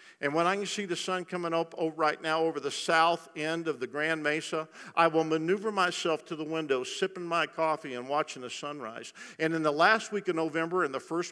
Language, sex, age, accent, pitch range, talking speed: English, male, 50-69, American, 130-175 Hz, 230 wpm